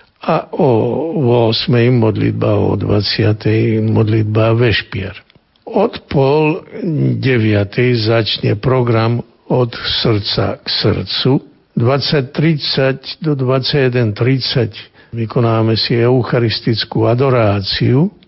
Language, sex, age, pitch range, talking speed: Slovak, male, 60-79, 110-135 Hz, 80 wpm